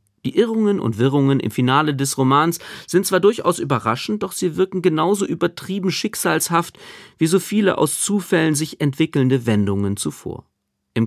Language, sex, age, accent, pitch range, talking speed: German, male, 40-59, German, 125-180 Hz, 150 wpm